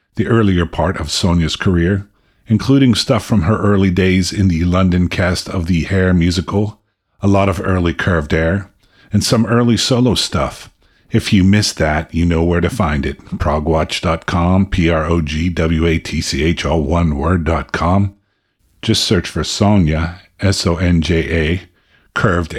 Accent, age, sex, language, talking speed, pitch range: American, 50-69, male, English, 135 wpm, 85-100 Hz